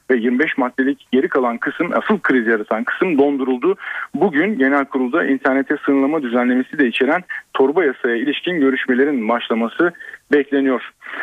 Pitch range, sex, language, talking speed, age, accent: 125-150 Hz, male, Turkish, 135 wpm, 40-59, native